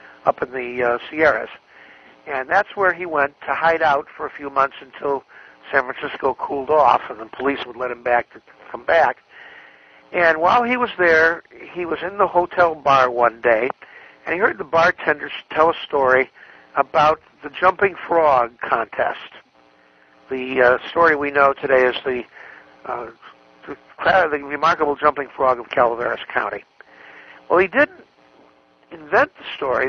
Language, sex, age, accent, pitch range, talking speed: English, male, 60-79, American, 125-170 Hz, 160 wpm